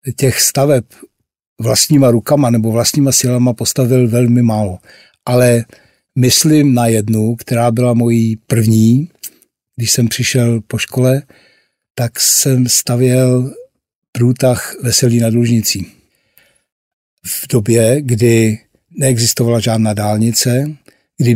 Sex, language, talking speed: male, Czech, 105 wpm